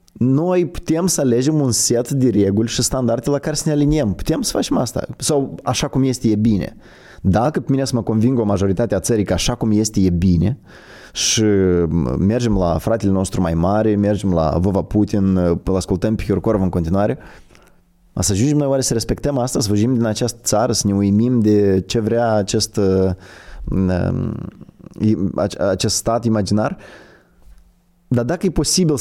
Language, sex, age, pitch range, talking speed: Romanian, male, 20-39, 95-135 Hz, 175 wpm